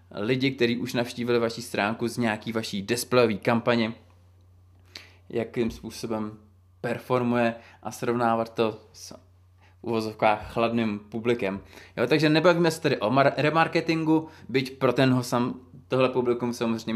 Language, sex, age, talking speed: Czech, male, 20-39, 125 wpm